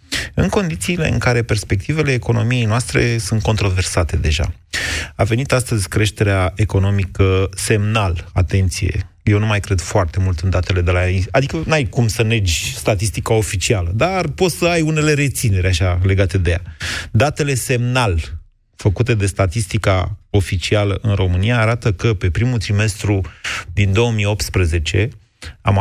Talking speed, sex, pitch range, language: 140 wpm, male, 95-115 Hz, Romanian